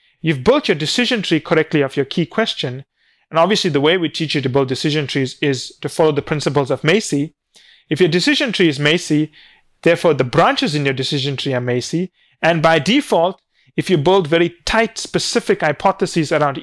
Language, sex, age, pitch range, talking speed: English, male, 30-49, 140-180 Hz, 195 wpm